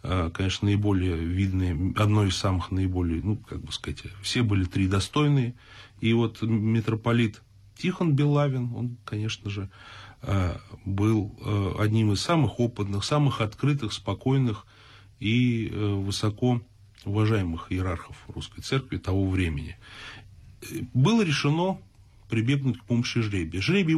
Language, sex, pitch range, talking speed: Russian, male, 100-130 Hz, 115 wpm